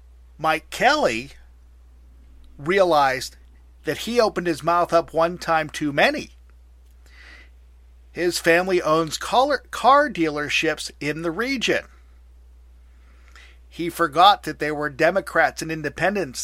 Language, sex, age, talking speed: English, male, 50-69, 105 wpm